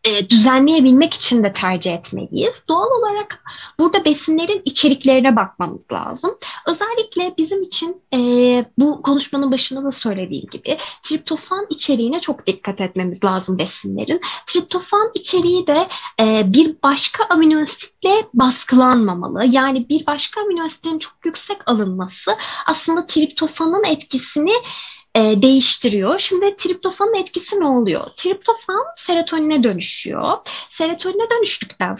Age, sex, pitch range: 10-29, female, 250-365 Hz